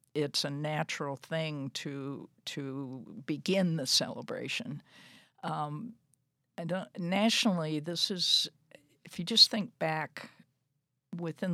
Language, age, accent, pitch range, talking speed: English, 60-79, American, 140-175 Hz, 105 wpm